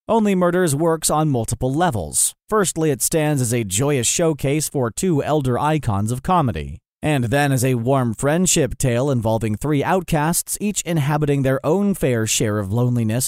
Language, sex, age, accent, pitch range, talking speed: English, male, 30-49, American, 120-165 Hz, 165 wpm